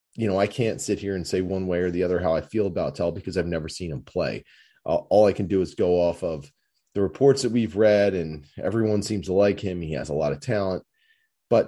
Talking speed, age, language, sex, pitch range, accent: 260 wpm, 30-49, English, male, 85-105 Hz, American